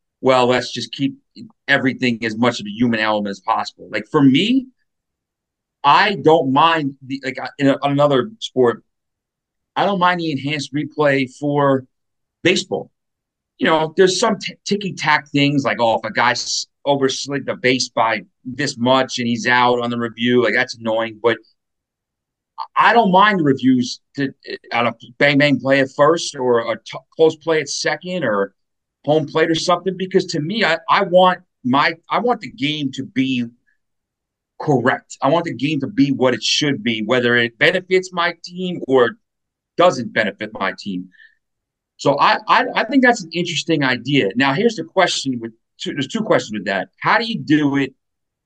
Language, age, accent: English, 40-59, American